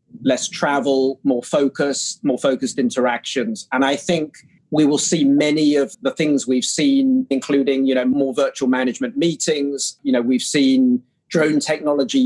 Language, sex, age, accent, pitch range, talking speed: English, male, 40-59, British, 135-155 Hz, 155 wpm